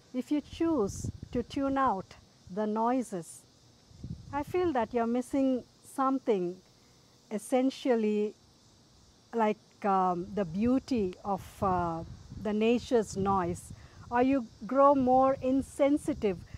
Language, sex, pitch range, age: English, female, 200-255 Hz, 50-69